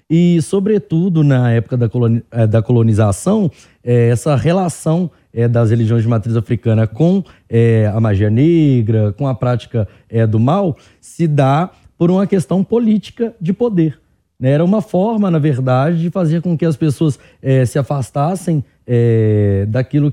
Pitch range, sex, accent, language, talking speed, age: 115-155 Hz, male, Brazilian, Portuguese, 130 wpm, 20-39